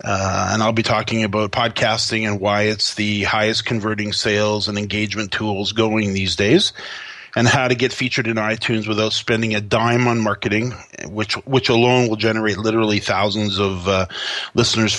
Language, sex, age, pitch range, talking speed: English, male, 30-49, 110-135 Hz, 170 wpm